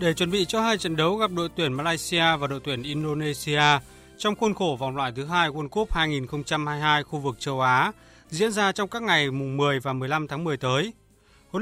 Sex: male